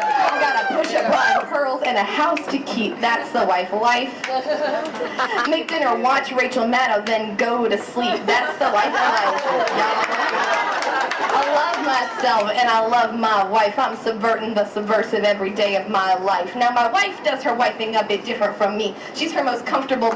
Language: English